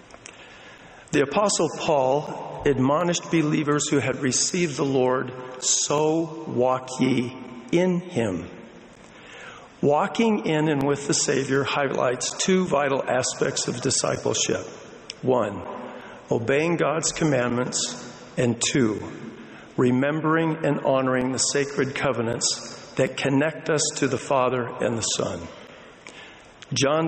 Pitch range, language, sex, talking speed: 125-160 Hz, English, male, 110 wpm